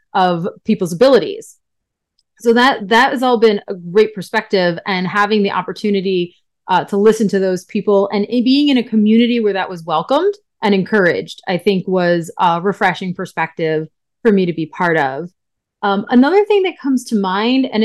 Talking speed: 180 wpm